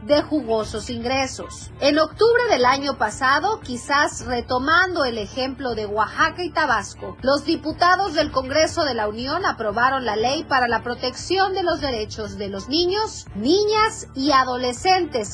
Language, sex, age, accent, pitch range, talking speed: Spanish, female, 30-49, Mexican, 245-340 Hz, 150 wpm